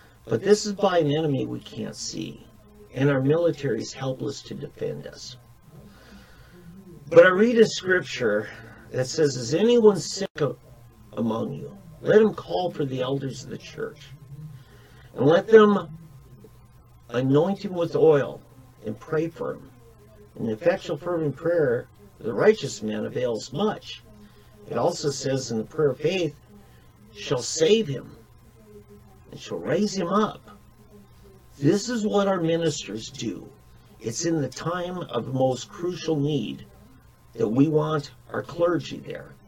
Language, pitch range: English, 115-180 Hz